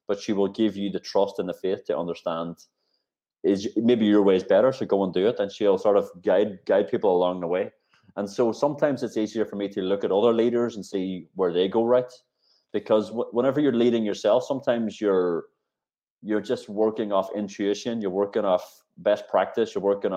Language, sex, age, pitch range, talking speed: English, male, 20-39, 95-120 Hz, 210 wpm